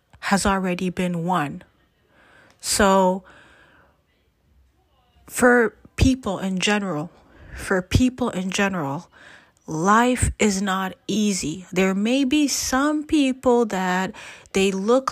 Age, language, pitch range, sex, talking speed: 30-49, English, 180-220 Hz, female, 100 wpm